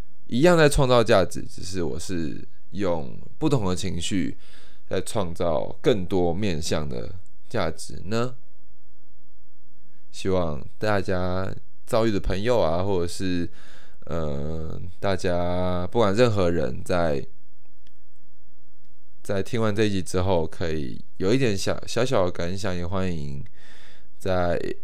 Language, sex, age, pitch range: Chinese, male, 20-39, 85-100 Hz